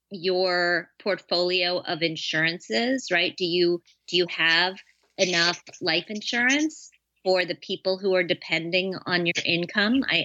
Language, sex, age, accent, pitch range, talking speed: English, female, 30-49, American, 170-210 Hz, 135 wpm